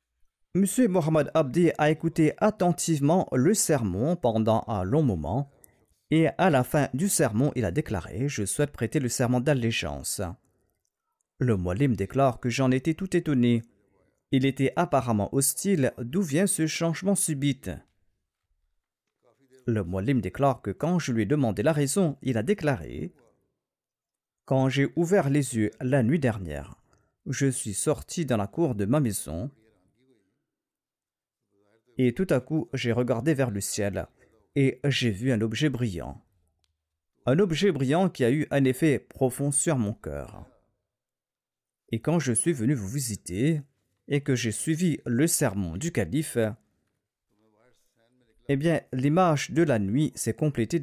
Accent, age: French, 40-59